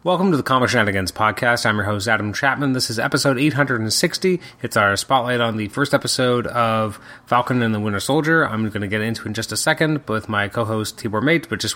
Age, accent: 30-49, American